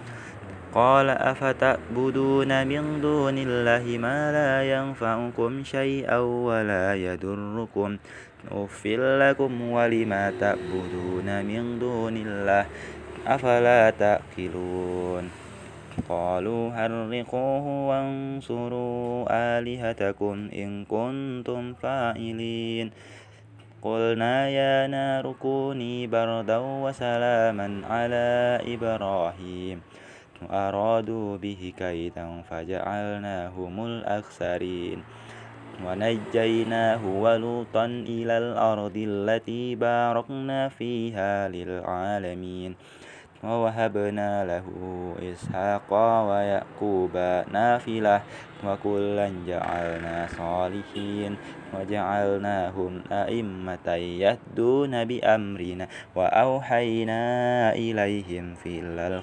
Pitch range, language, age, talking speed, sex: 95-120 Hz, Indonesian, 20-39, 70 wpm, male